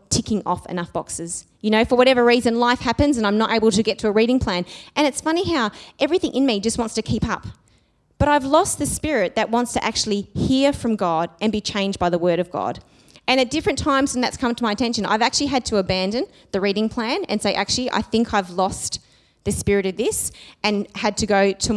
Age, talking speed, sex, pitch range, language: 20-39, 240 wpm, female, 195-245 Hz, English